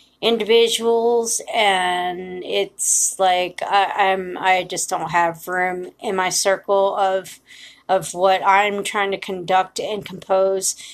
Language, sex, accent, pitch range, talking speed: English, female, American, 185-230 Hz, 120 wpm